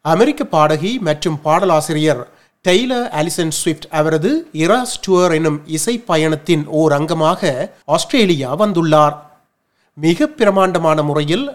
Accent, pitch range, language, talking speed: native, 155-195 Hz, Tamil, 105 wpm